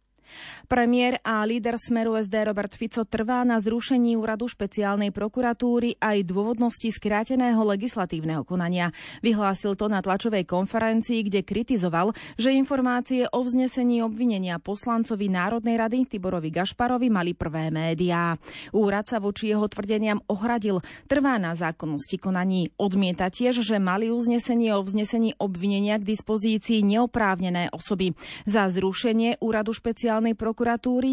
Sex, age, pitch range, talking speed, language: female, 30-49, 190-235 Hz, 125 wpm, Slovak